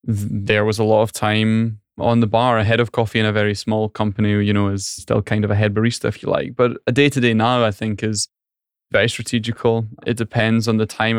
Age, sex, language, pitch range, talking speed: 10-29, male, English, 105-115 Hz, 240 wpm